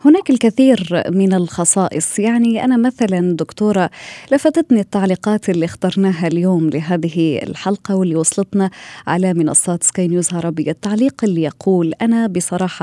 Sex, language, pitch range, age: female, Arabic, 175-220 Hz, 20-39